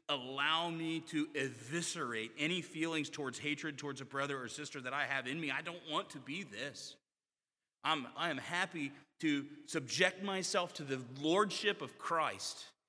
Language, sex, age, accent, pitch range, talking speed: English, male, 30-49, American, 130-175 Hz, 170 wpm